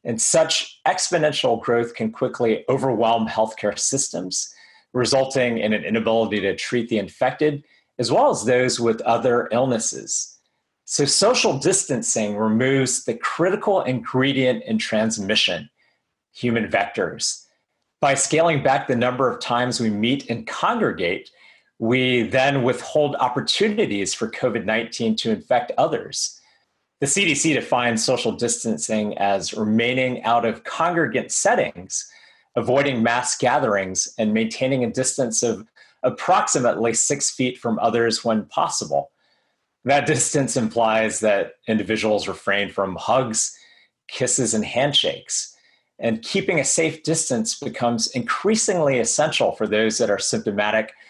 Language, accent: English, American